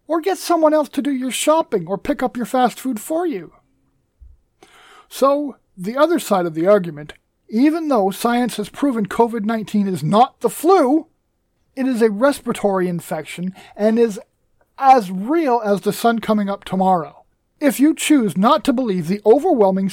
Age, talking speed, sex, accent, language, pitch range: 40-59, 170 wpm, male, American, English, 200-285 Hz